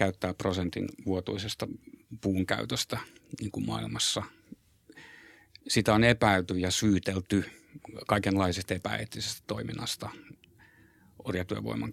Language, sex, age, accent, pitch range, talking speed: Finnish, male, 50-69, native, 90-110 Hz, 80 wpm